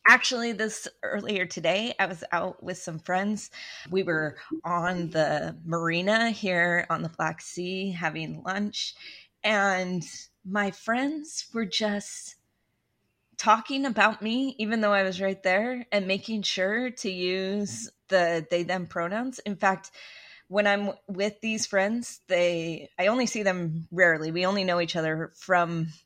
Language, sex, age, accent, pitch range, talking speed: English, female, 20-39, American, 170-215 Hz, 145 wpm